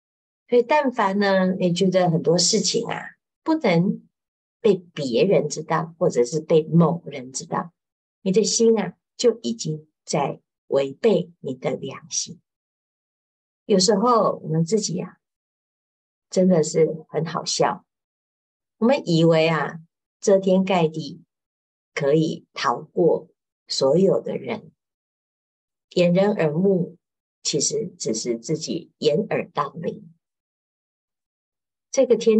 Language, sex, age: Chinese, female, 50-69